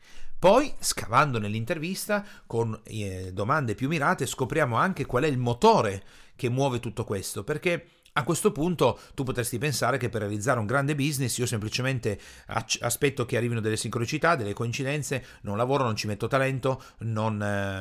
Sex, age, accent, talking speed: male, 40-59, native, 160 wpm